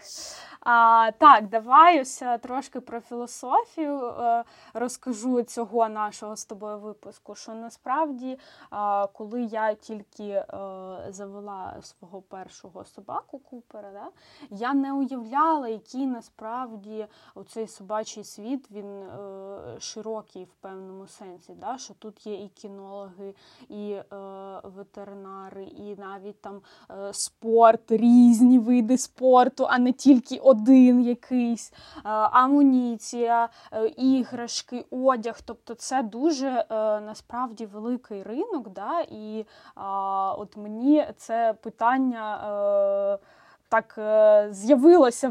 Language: Ukrainian